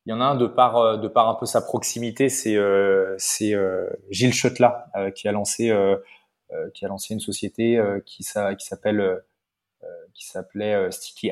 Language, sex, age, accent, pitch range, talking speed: French, male, 20-39, French, 100-120 Hz, 170 wpm